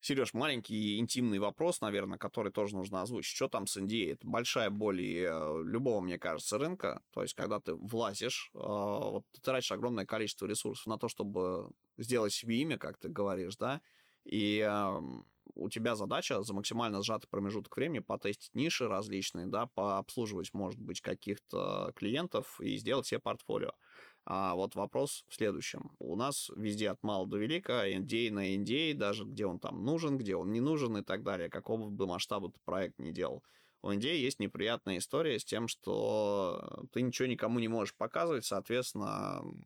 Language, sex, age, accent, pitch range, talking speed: Russian, male, 20-39, native, 100-115 Hz, 170 wpm